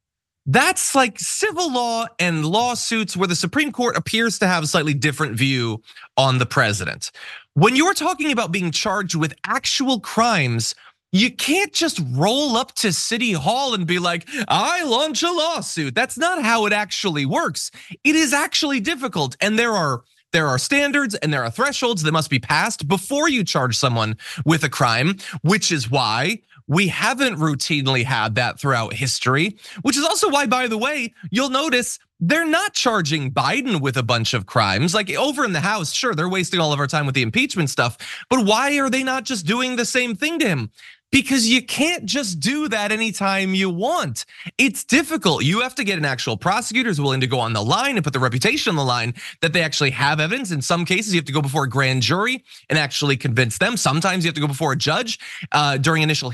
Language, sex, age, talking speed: English, male, 20-39, 205 wpm